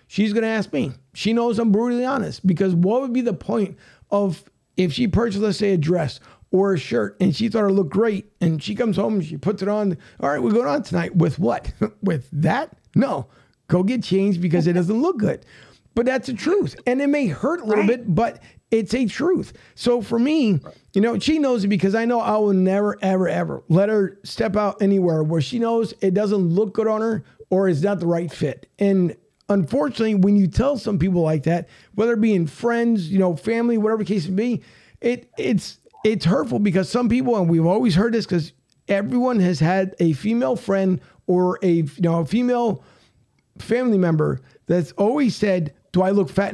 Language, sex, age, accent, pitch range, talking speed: English, male, 50-69, American, 180-230 Hz, 215 wpm